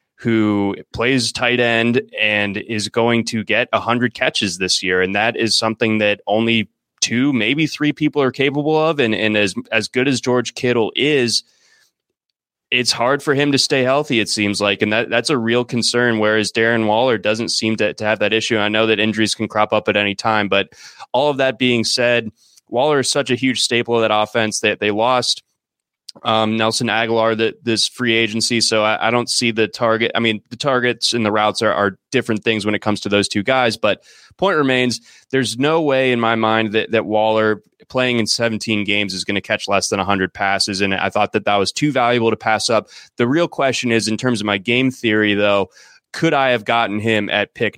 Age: 20-39